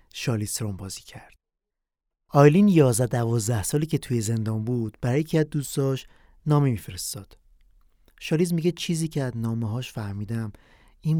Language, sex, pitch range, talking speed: Persian, male, 110-140 Hz, 130 wpm